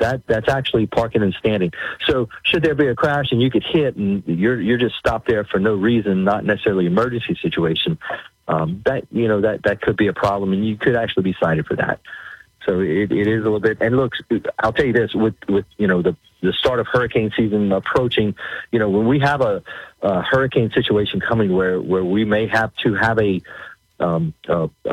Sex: male